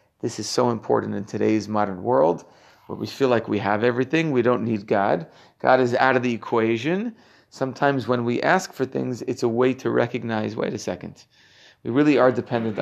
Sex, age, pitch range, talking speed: male, 40-59, 115-150 Hz, 200 wpm